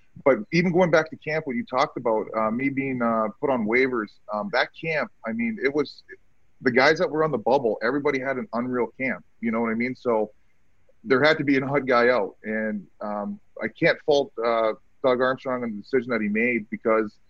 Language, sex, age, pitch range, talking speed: English, male, 30-49, 110-135 Hz, 225 wpm